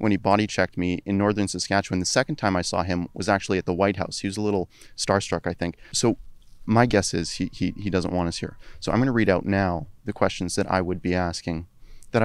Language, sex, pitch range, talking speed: English, male, 90-105 Hz, 255 wpm